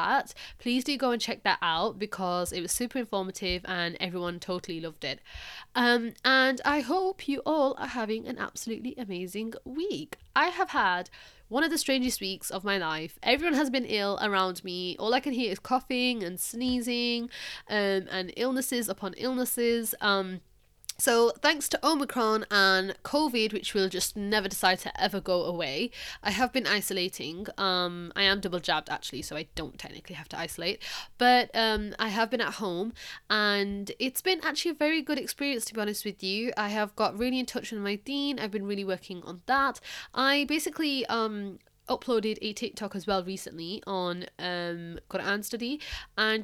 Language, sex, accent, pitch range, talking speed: English, female, British, 190-245 Hz, 185 wpm